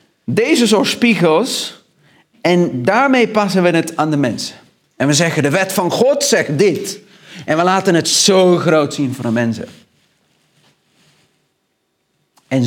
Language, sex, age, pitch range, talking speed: Dutch, male, 50-69, 145-210 Hz, 145 wpm